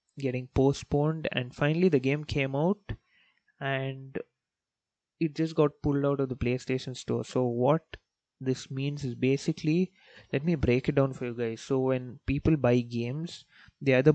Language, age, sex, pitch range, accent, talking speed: English, 20-39, male, 125-145 Hz, Indian, 165 wpm